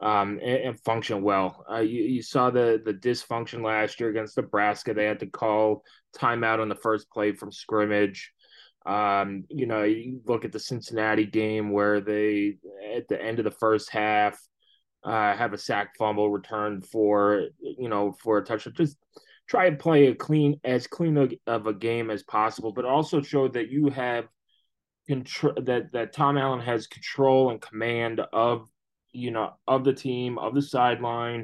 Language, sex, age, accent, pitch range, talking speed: English, male, 20-39, American, 110-135 Hz, 180 wpm